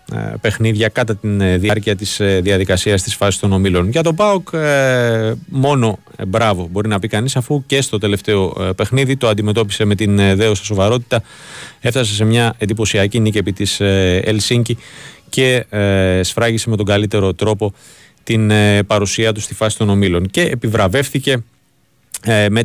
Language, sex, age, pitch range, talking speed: Greek, male, 30-49, 100-125 Hz, 140 wpm